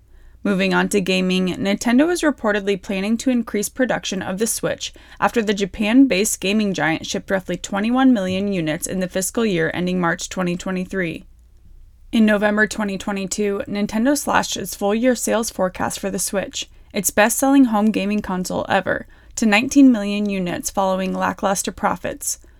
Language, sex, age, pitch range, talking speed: English, female, 20-39, 190-220 Hz, 150 wpm